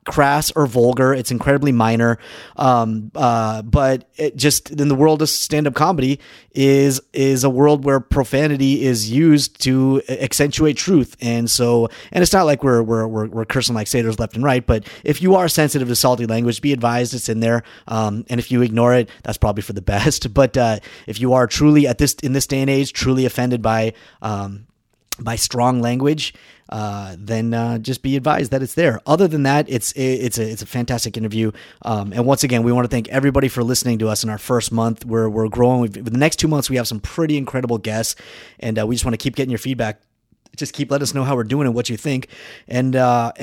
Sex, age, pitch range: male, 30-49, 115-145 Hz